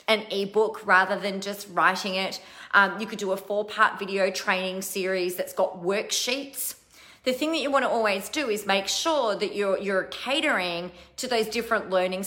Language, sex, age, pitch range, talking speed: English, female, 30-49, 180-235 Hz, 180 wpm